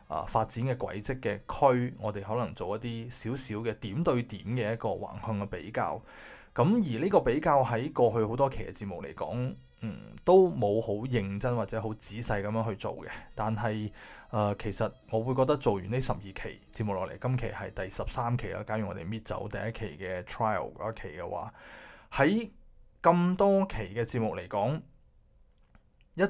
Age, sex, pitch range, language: 20-39, male, 105-130 Hz, Chinese